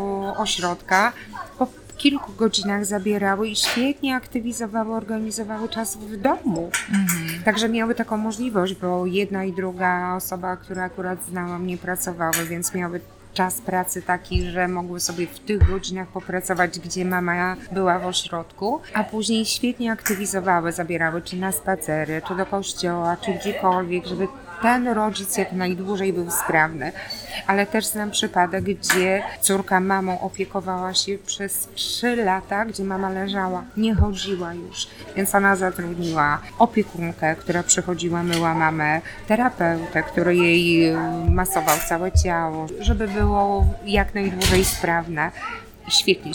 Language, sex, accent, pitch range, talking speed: Polish, female, native, 175-205 Hz, 130 wpm